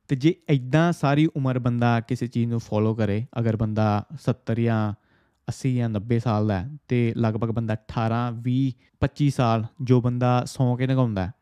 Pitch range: 115-140 Hz